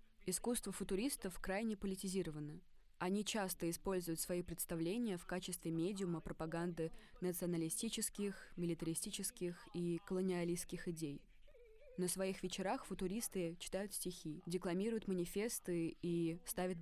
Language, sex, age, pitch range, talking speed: Russian, female, 20-39, 170-200 Hz, 100 wpm